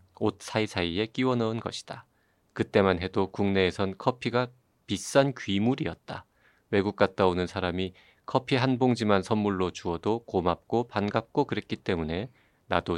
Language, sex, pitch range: Korean, male, 95-115 Hz